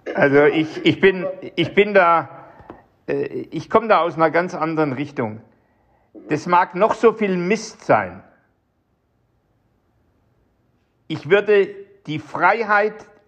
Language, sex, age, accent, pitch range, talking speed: German, male, 60-79, German, 165-220 Hz, 115 wpm